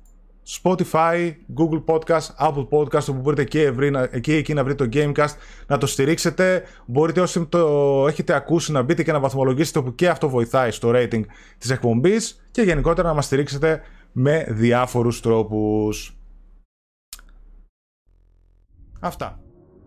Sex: male